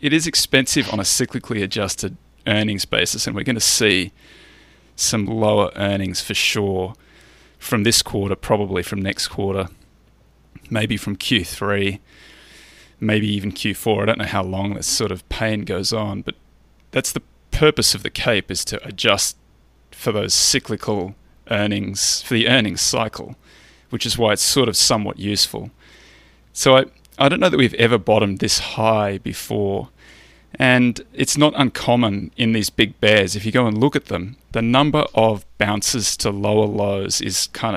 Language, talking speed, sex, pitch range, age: English, 165 wpm, male, 100-115 Hz, 20-39